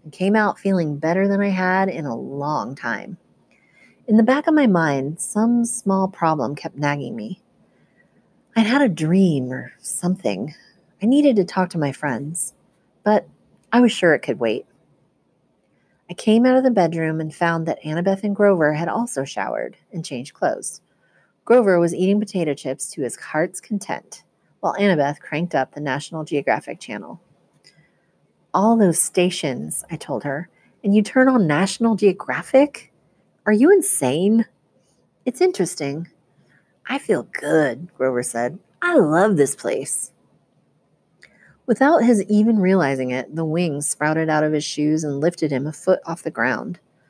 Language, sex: English, female